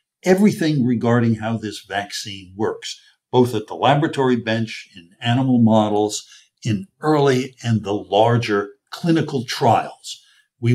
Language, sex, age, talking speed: English, male, 60-79, 125 wpm